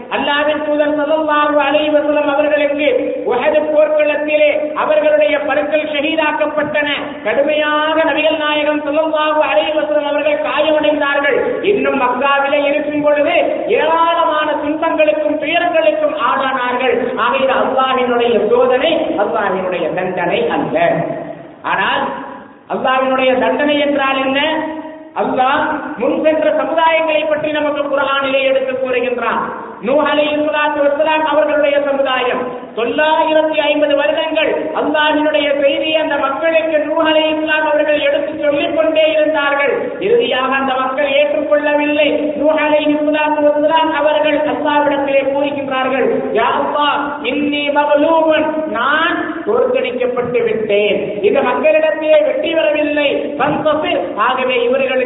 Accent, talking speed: Indian, 65 wpm